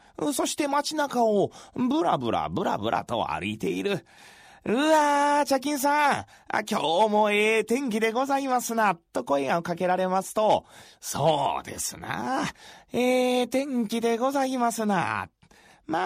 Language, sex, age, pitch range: Japanese, male, 30-49, 195-285 Hz